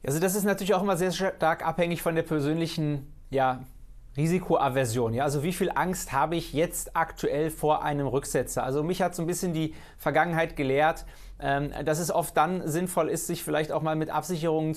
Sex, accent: male, German